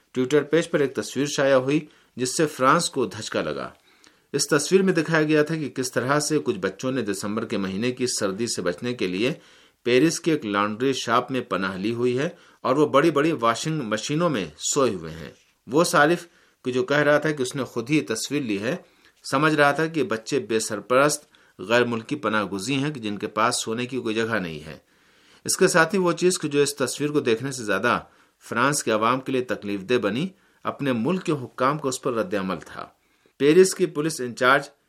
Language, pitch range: Urdu, 115-150 Hz